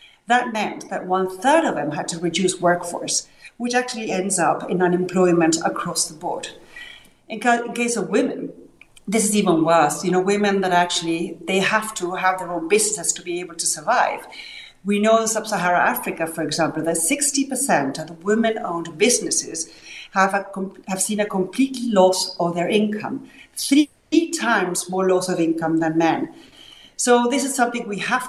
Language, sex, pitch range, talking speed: English, female, 175-225 Hz, 175 wpm